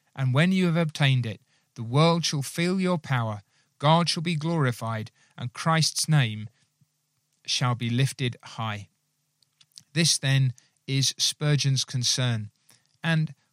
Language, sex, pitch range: English, male, 130-160 Hz